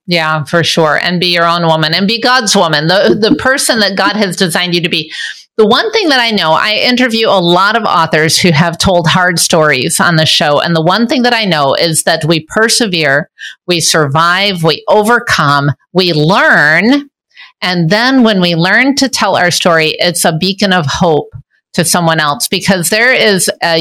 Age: 50-69